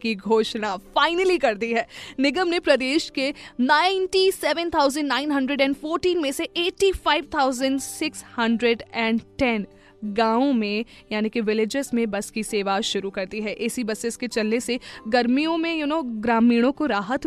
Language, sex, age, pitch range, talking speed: Hindi, female, 20-39, 225-280 Hz, 140 wpm